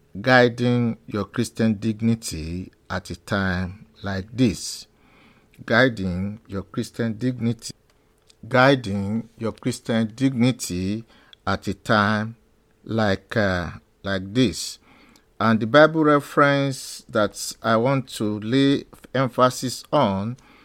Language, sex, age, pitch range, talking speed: English, male, 50-69, 110-145 Hz, 100 wpm